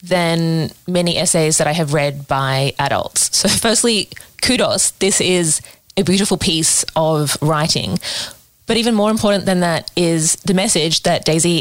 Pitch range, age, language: 165-195 Hz, 20-39, English